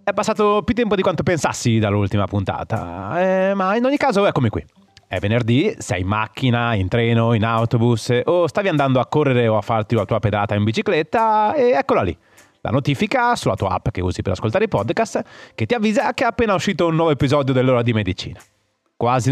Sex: male